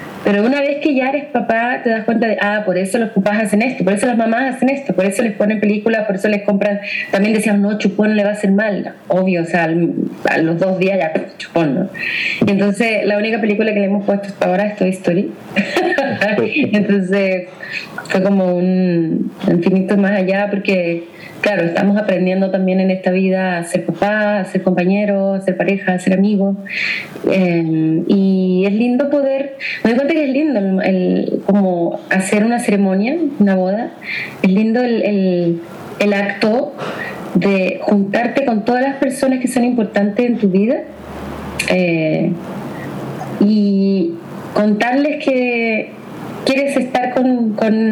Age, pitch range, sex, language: 30-49, 190-230 Hz, female, Spanish